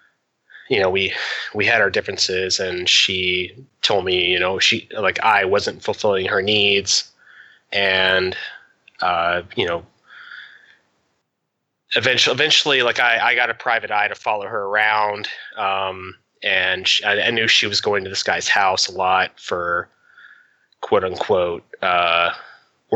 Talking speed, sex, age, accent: 145 wpm, male, 20-39, American